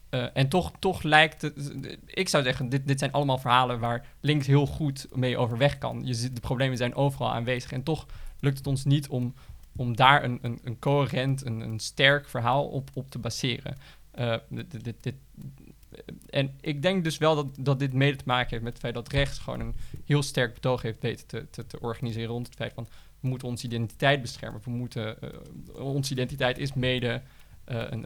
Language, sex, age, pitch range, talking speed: Dutch, male, 20-39, 120-140 Hz, 205 wpm